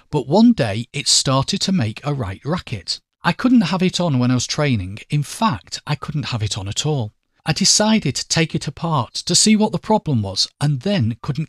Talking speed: 225 wpm